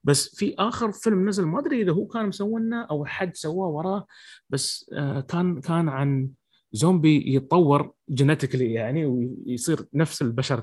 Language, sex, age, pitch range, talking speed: English, male, 30-49, 140-185 Hz, 145 wpm